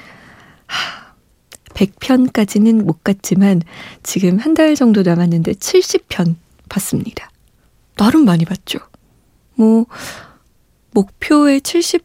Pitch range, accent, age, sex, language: 185-245 Hz, native, 20-39, female, Korean